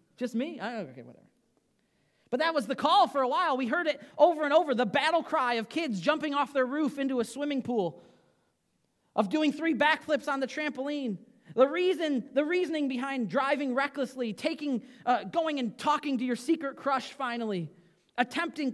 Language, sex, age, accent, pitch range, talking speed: English, male, 30-49, American, 195-280 Hz, 180 wpm